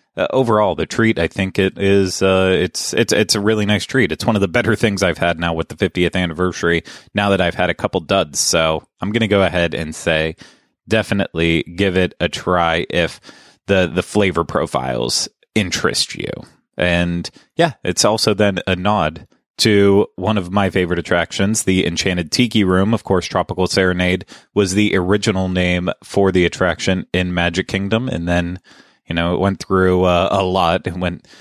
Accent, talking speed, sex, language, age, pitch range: American, 185 wpm, male, English, 30-49, 90-105 Hz